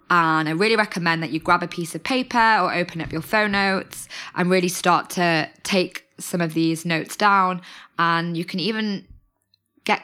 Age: 20-39